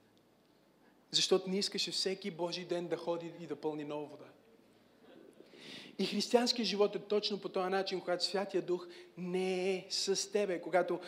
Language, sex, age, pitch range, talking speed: Bulgarian, male, 30-49, 180-225 Hz, 155 wpm